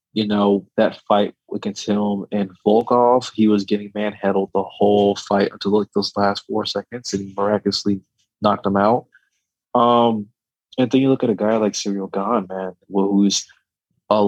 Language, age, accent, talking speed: English, 20-39, American, 170 wpm